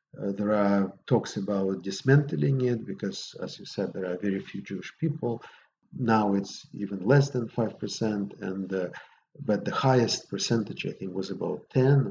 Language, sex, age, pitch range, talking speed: English, male, 50-69, 105-135 Hz, 170 wpm